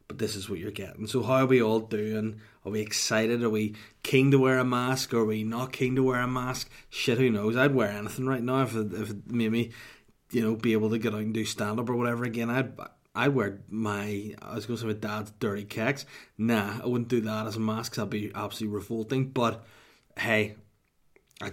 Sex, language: male, English